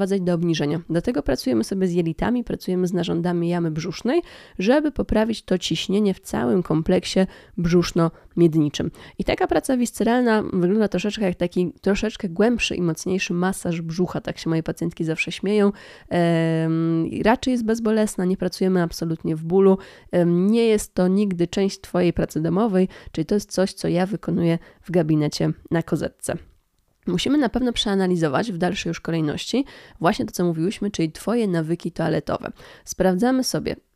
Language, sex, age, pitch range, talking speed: Polish, female, 20-39, 170-200 Hz, 150 wpm